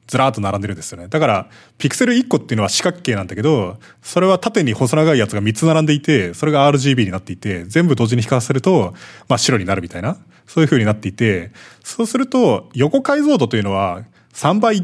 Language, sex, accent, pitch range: Japanese, male, native, 110-165 Hz